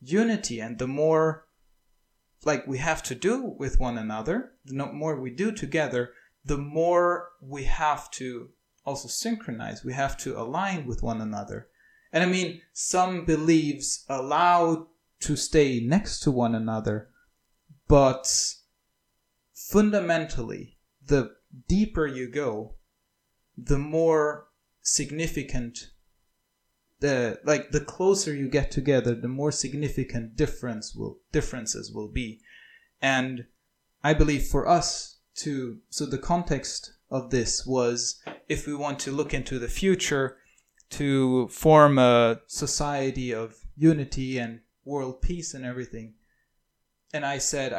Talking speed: 125 wpm